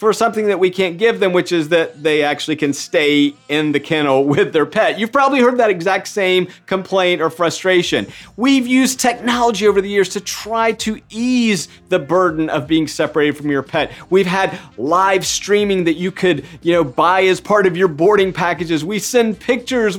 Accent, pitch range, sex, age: American, 150-220 Hz, male, 40-59